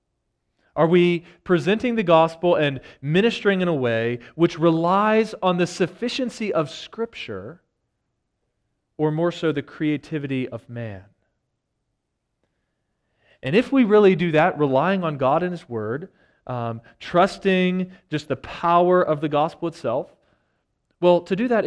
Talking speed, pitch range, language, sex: 135 wpm, 130-180 Hz, English, male